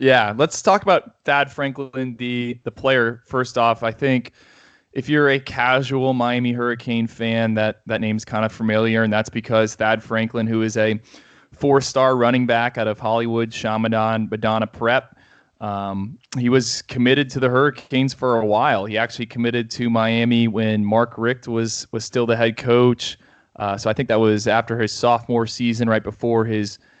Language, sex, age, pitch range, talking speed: English, male, 20-39, 110-125 Hz, 180 wpm